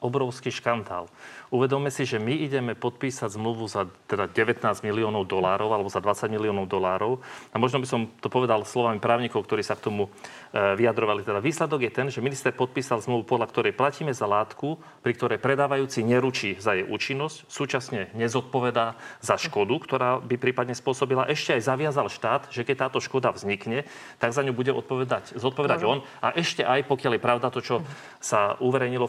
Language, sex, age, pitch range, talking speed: Slovak, male, 40-59, 115-135 Hz, 175 wpm